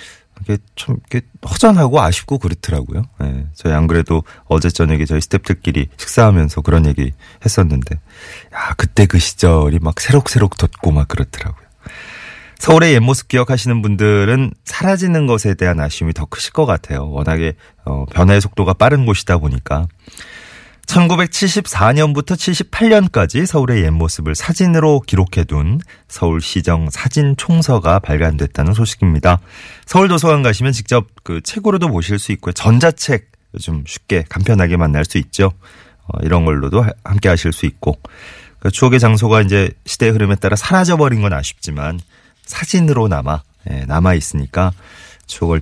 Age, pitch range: 30-49, 80-125 Hz